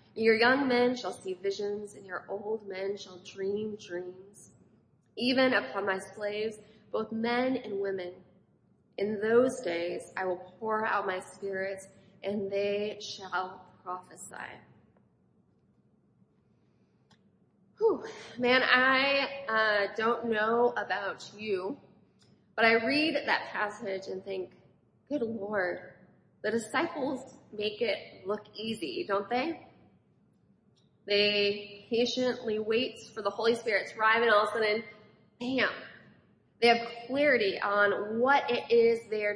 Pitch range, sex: 200-245 Hz, female